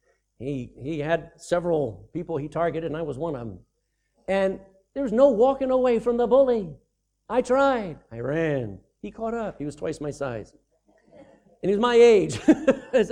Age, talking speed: 60-79, 185 wpm